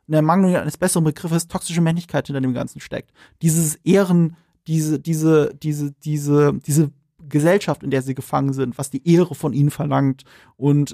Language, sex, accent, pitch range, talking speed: German, male, German, 145-170 Hz, 175 wpm